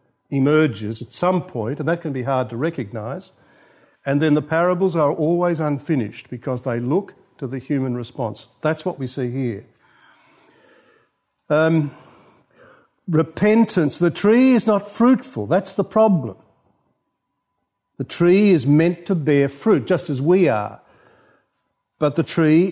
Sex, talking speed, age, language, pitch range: male, 145 wpm, 50-69, English, 135-180 Hz